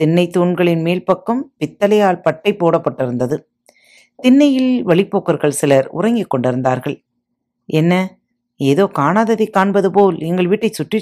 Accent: native